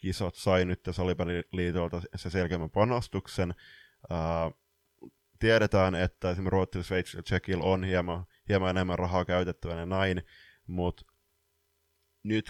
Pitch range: 85-100 Hz